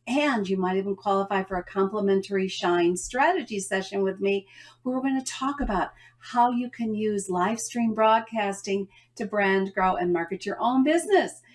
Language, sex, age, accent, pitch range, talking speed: English, female, 50-69, American, 195-280 Hz, 175 wpm